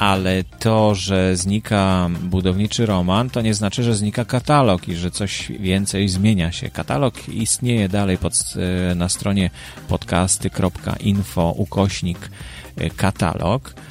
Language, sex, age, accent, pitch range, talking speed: Polish, male, 30-49, native, 95-120 Hz, 110 wpm